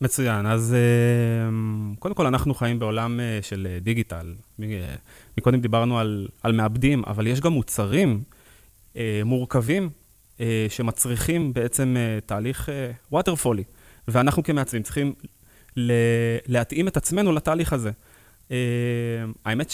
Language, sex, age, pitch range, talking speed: Hebrew, male, 20-39, 110-140 Hz, 95 wpm